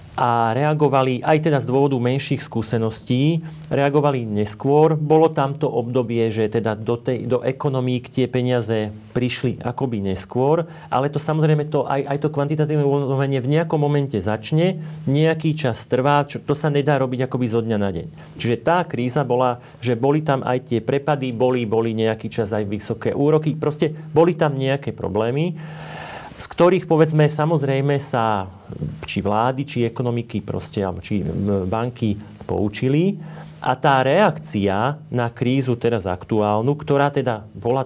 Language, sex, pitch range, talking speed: Slovak, male, 120-150 Hz, 150 wpm